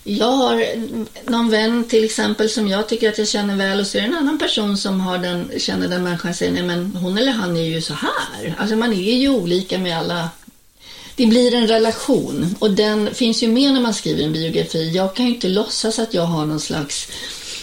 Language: Swedish